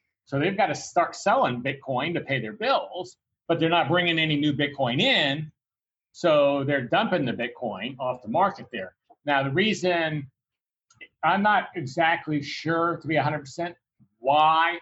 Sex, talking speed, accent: male, 160 wpm, American